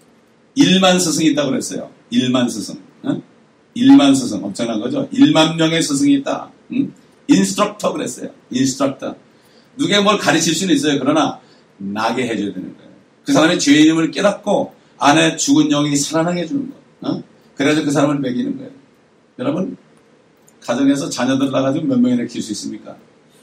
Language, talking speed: English, 140 wpm